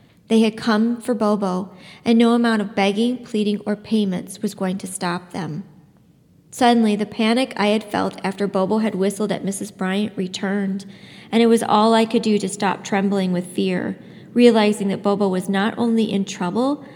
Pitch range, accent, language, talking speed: 190-215 Hz, American, English, 185 wpm